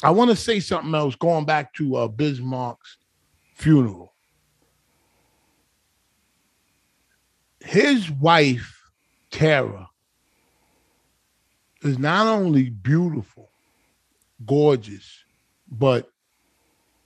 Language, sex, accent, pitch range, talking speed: English, male, American, 115-165 Hz, 75 wpm